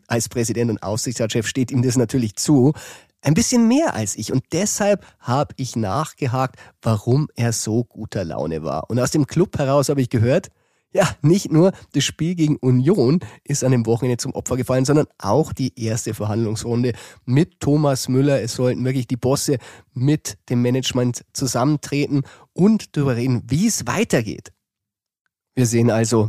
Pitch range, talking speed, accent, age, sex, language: 115-145 Hz, 165 wpm, German, 30-49, male, German